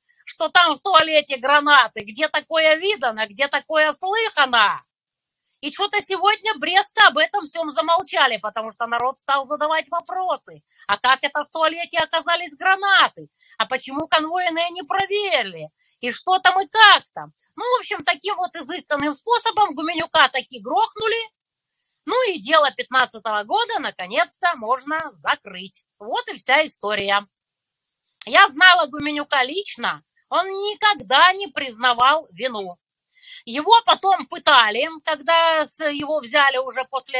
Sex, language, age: female, Russian, 30-49